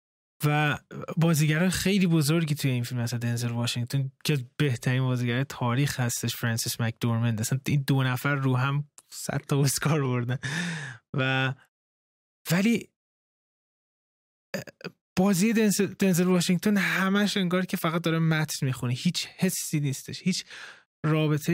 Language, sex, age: Persian, male, 20-39